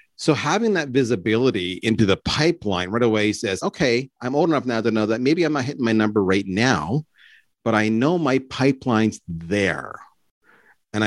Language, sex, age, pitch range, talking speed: English, male, 40-59, 105-135 Hz, 180 wpm